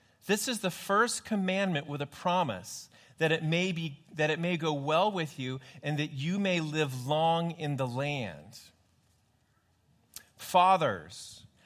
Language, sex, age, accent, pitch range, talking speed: English, male, 30-49, American, 115-170 Hz, 150 wpm